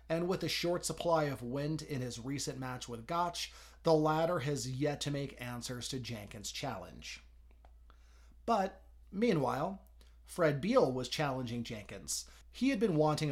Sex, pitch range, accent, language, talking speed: male, 115-155 Hz, American, English, 155 wpm